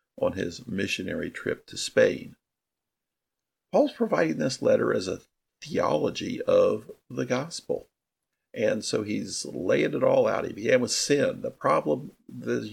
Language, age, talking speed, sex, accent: English, 50-69, 140 wpm, male, American